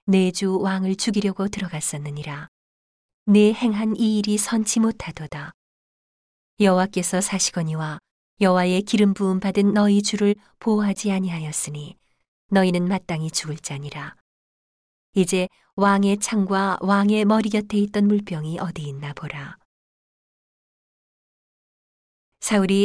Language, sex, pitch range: Korean, female, 170-205 Hz